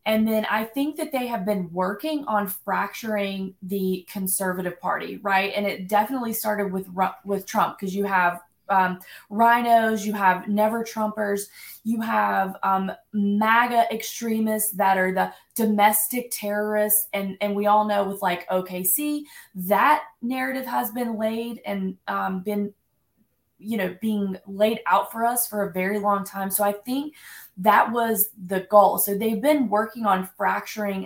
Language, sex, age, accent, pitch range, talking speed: English, female, 20-39, American, 195-230 Hz, 160 wpm